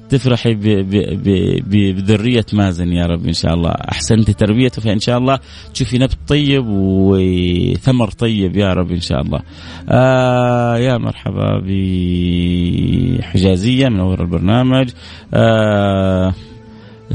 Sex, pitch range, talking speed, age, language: male, 100-120 Hz, 110 wpm, 30-49, Arabic